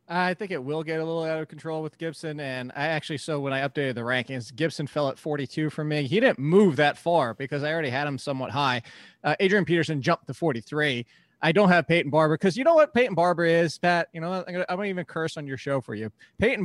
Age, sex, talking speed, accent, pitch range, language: 20-39, male, 260 wpm, American, 145-200 Hz, English